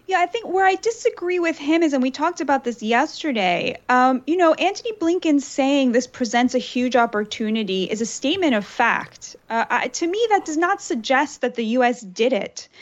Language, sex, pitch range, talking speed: English, female, 220-295 Hz, 205 wpm